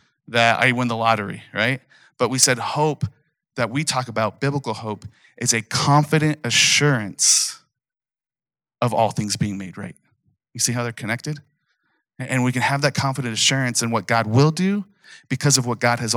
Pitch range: 115-140 Hz